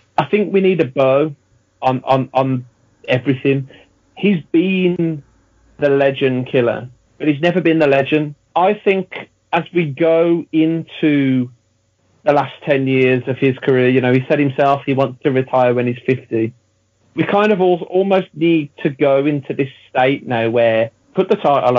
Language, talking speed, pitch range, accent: English, 170 wpm, 130-170 Hz, British